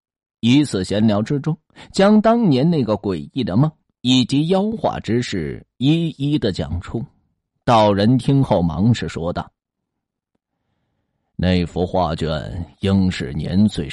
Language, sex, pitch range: Chinese, male, 90-125 Hz